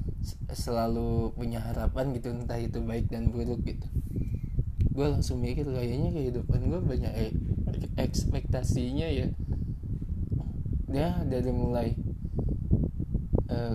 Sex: male